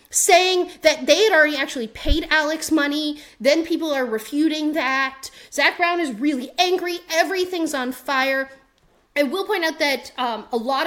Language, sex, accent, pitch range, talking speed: English, female, American, 230-325 Hz, 165 wpm